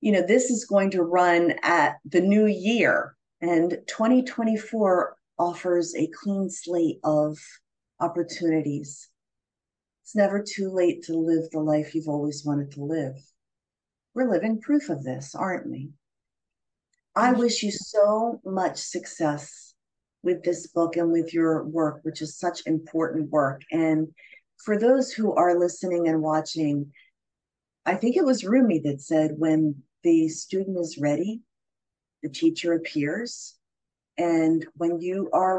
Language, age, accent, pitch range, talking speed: English, 40-59, American, 160-215 Hz, 140 wpm